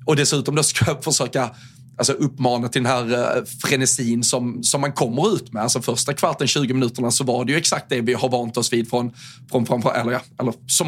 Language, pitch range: Swedish, 125-145 Hz